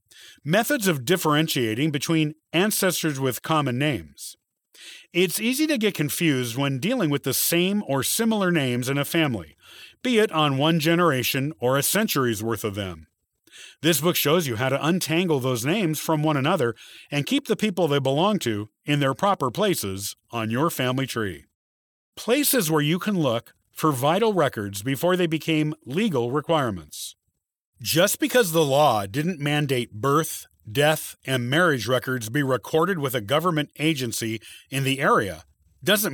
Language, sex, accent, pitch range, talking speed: English, male, American, 120-180 Hz, 160 wpm